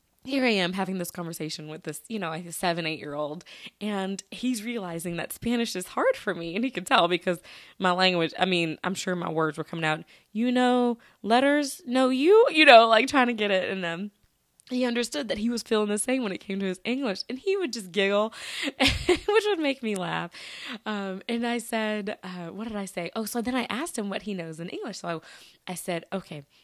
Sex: female